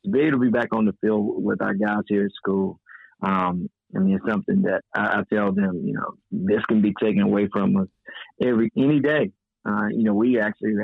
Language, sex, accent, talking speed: English, male, American, 225 wpm